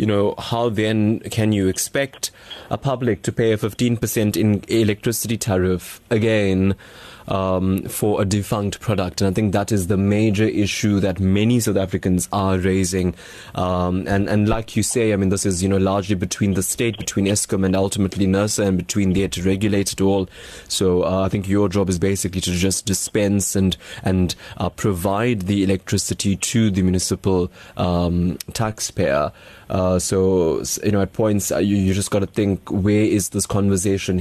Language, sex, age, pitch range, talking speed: English, male, 20-39, 95-110 Hz, 180 wpm